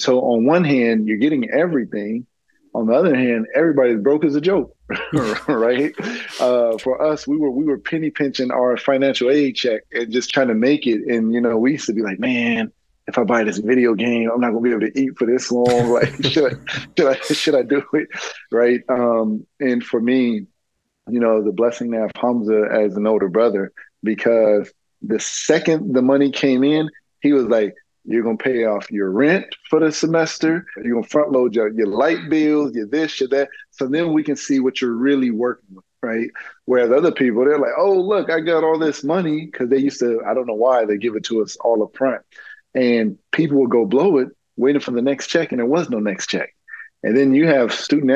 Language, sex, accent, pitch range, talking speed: English, male, American, 115-145 Hz, 225 wpm